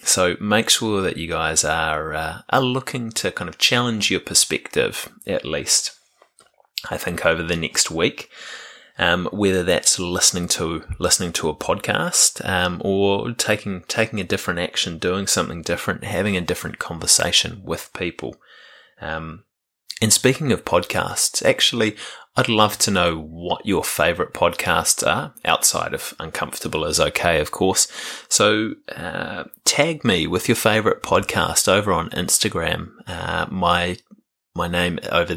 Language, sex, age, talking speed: English, male, 20-39, 150 wpm